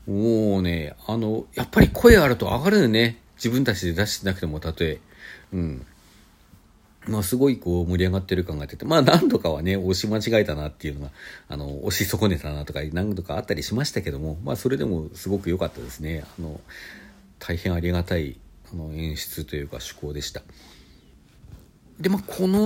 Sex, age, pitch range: male, 50-69, 80-115 Hz